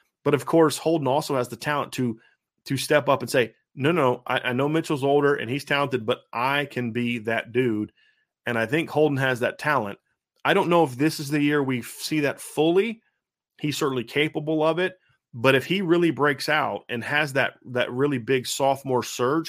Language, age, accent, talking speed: English, 30-49, American, 210 wpm